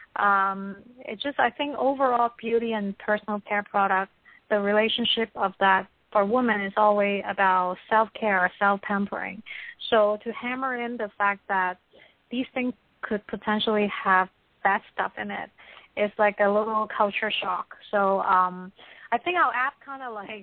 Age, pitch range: 30-49, 200-230 Hz